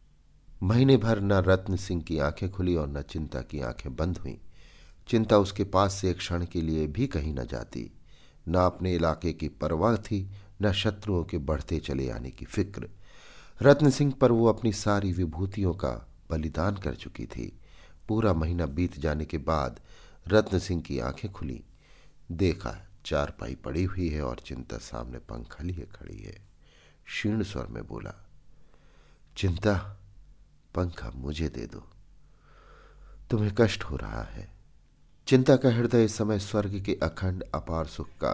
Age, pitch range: 50-69, 75-100 Hz